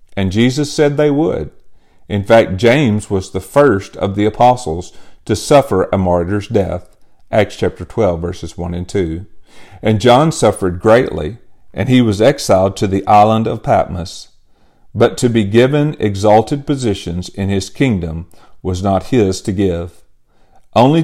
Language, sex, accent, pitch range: English, male, American, 95-120 Hz